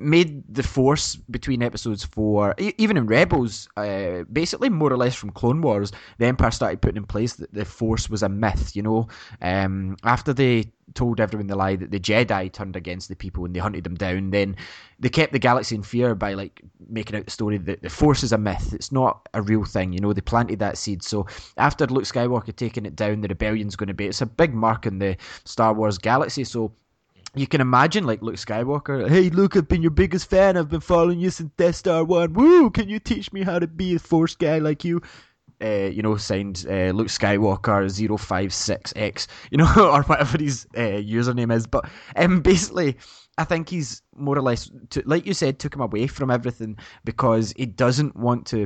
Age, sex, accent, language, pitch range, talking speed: 20-39, male, British, English, 100-145 Hz, 215 wpm